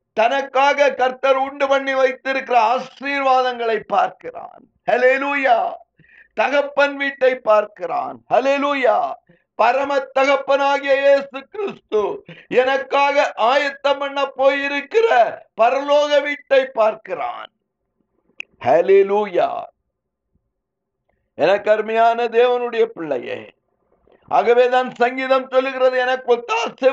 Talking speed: 65 wpm